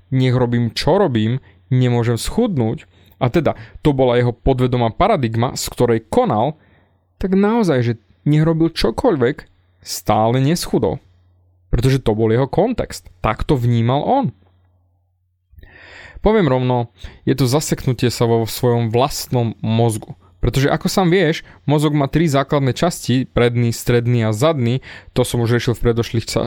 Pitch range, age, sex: 115-150 Hz, 20-39, male